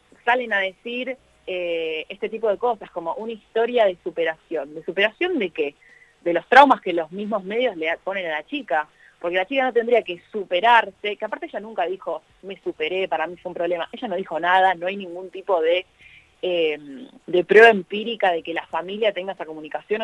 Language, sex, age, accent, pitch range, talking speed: Spanish, female, 30-49, Argentinian, 175-230 Hz, 205 wpm